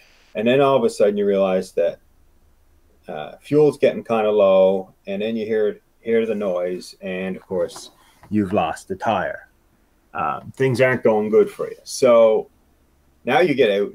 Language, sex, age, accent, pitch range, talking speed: English, male, 30-49, American, 95-150 Hz, 175 wpm